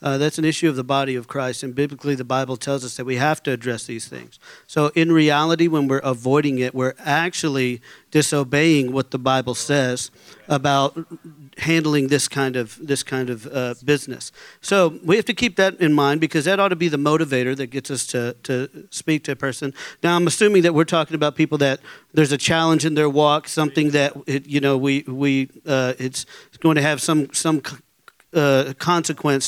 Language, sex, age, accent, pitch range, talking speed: English, male, 40-59, American, 140-165 Hz, 220 wpm